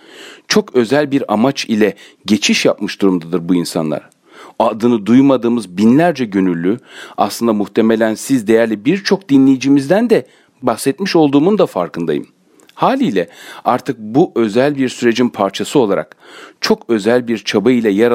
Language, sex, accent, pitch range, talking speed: Turkish, male, native, 100-145 Hz, 125 wpm